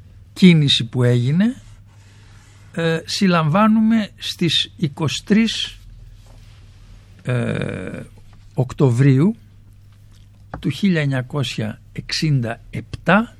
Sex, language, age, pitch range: male, Greek, 60-79, 100-150 Hz